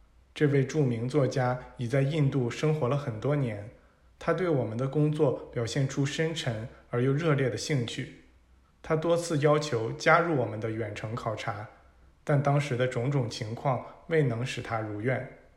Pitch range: 115-150 Hz